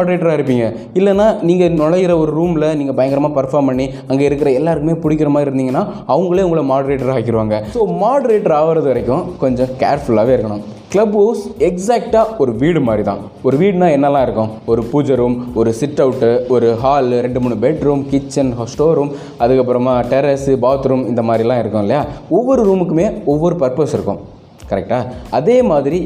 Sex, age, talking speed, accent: male, 20-39, 115 wpm, native